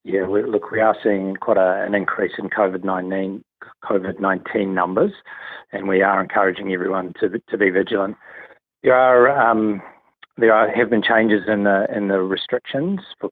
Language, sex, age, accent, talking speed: English, male, 40-59, Australian, 175 wpm